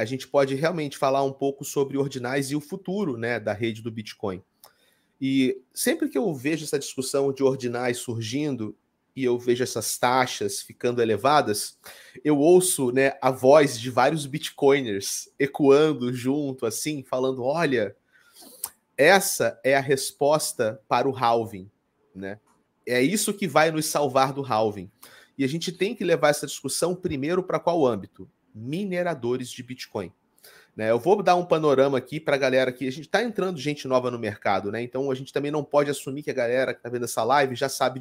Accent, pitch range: Brazilian, 125-150 Hz